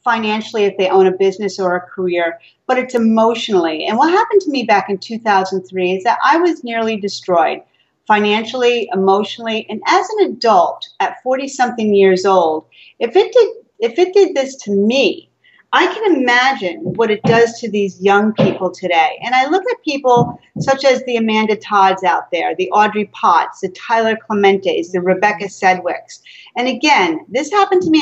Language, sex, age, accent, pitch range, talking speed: English, female, 40-59, American, 190-260 Hz, 175 wpm